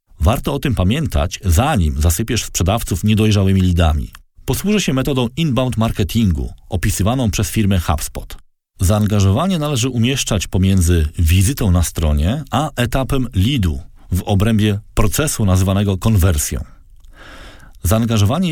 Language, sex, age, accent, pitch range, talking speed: Polish, male, 40-59, native, 85-115 Hz, 110 wpm